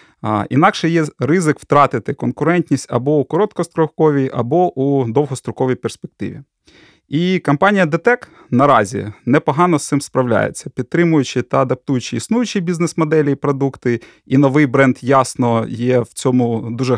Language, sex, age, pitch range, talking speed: Ukrainian, male, 30-49, 125-155 Hz, 125 wpm